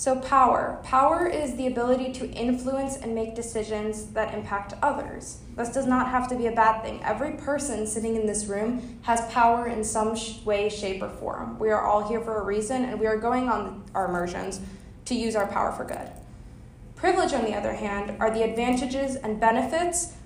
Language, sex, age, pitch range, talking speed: English, female, 10-29, 205-250 Hz, 200 wpm